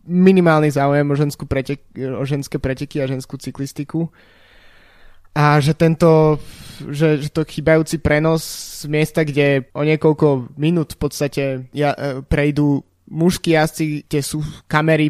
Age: 20-39